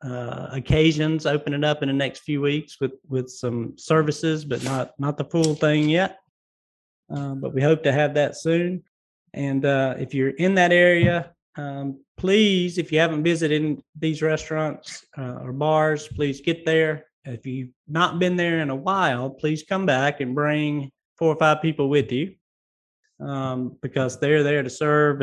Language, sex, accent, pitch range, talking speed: English, male, American, 135-160 Hz, 180 wpm